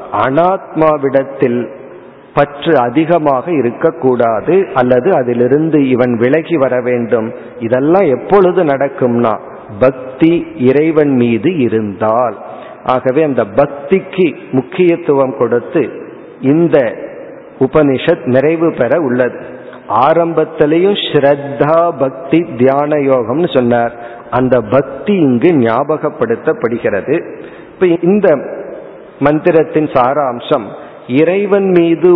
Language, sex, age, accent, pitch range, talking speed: Tamil, male, 50-69, native, 130-165 Hz, 80 wpm